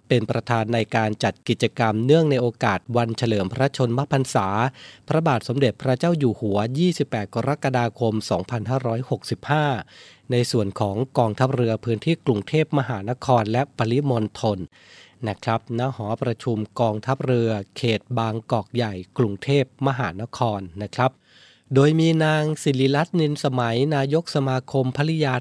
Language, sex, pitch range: Thai, male, 115-140 Hz